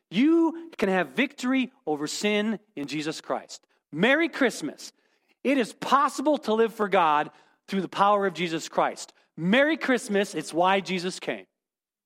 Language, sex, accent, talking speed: English, male, American, 150 wpm